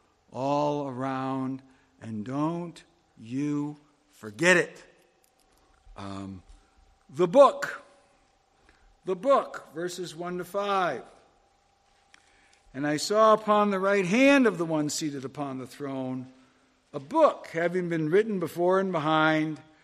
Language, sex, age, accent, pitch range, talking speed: English, male, 60-79, American, 140-210 Hz, 115 wpm